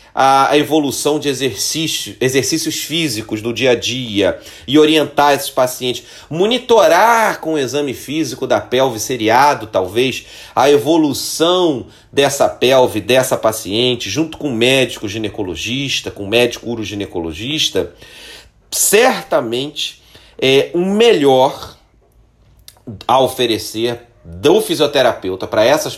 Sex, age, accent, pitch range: male, 40-59, Brazilian, 110-155 Hz